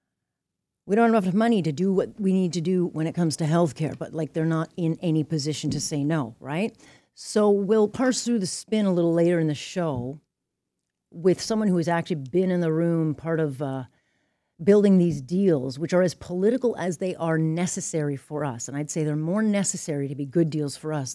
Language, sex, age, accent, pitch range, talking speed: English, female, 40-59, American, 145-185 Hz, 220 wpm